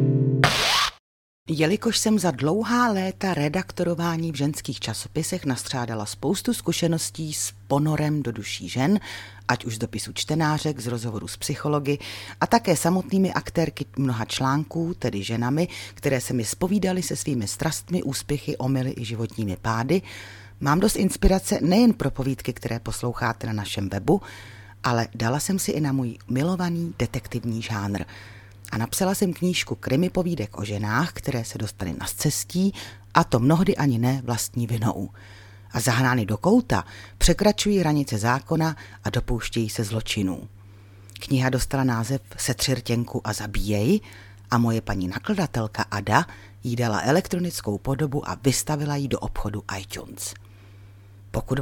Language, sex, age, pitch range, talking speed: Czech, female, 40-59, 105-155 Hz, 140 wpm